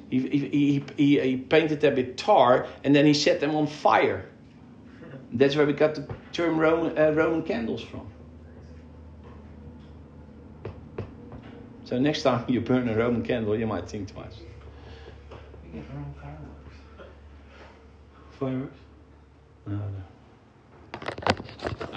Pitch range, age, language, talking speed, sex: 105-140 Hz, 50-69, English, 105 wpm, male